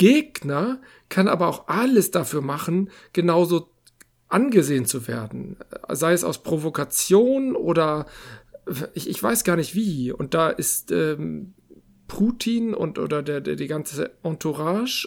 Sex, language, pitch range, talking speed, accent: male, German, 140-185 Hz, 135 wpm, German